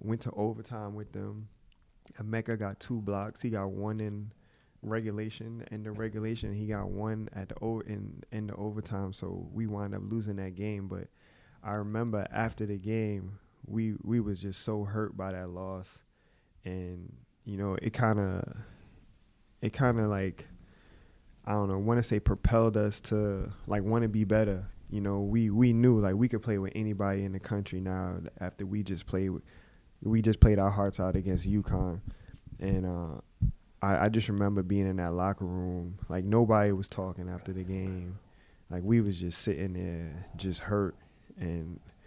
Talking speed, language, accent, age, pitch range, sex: 185 wpm, English, American, 20-39, 95-110 Hz, male